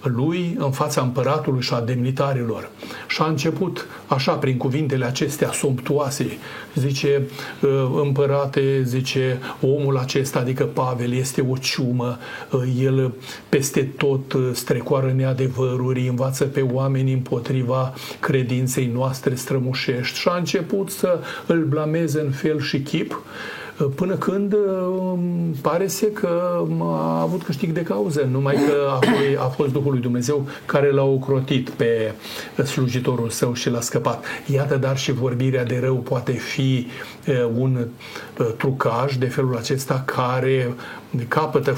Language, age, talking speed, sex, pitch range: Romanian, 40-59, 125 wpm, male, 130-145 Hz